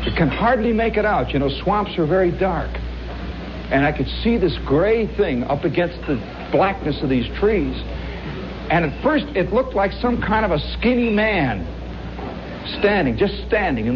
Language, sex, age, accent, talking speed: English, male, 60-79, American, 180 wpm